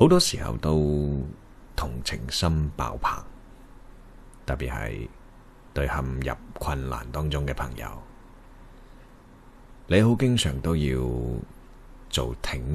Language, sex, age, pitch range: Chinese, male, 30-49, 70-115 Hz